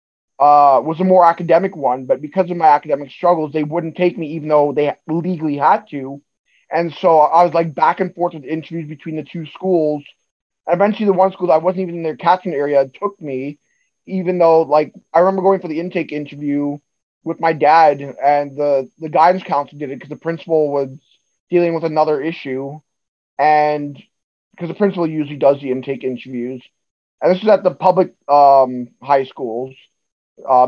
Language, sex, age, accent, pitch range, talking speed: English, male, 20-39, American, 145-170 Hz, 190 wpm